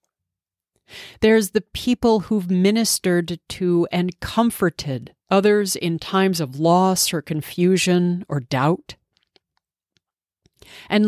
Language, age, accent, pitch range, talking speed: English, 40-59, American, 155-205 Hz, 95 wpm